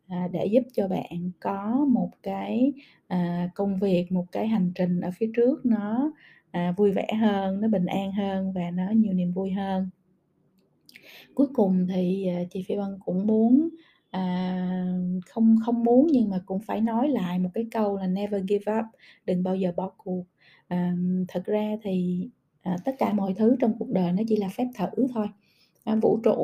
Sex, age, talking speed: female, 20-39, 190 wpm